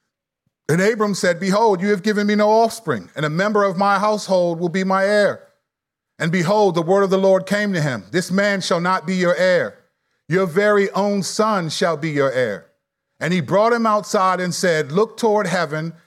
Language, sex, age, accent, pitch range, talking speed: English, male, 40-59, American, 170-215 Hz, 205 wpm